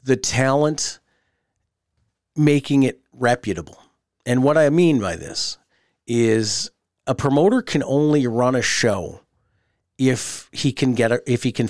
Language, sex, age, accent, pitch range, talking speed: English, male, 40-59, American, 115-140 Hz, 140 wpm